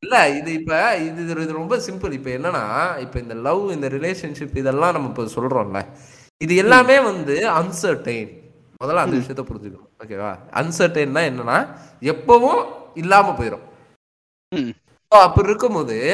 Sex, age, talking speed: male, 20-39, 120 wpm